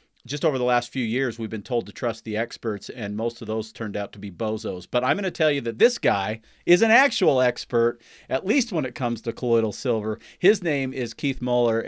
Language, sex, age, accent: English, male, 40-59, American